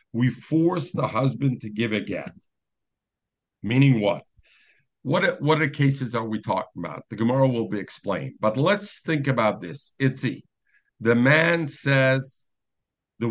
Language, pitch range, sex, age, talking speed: English, 110-135 Hz, male, 50-69, 145 wpm